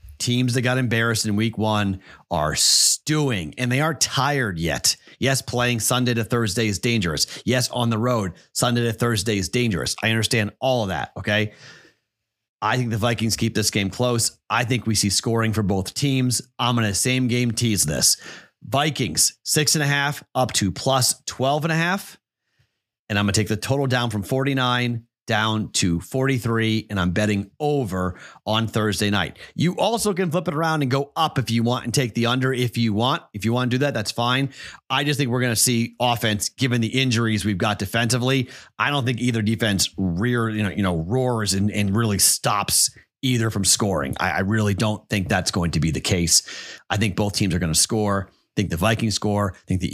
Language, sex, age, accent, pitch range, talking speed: English, male, 30-49, American, 105-125 Hz, 210 wpm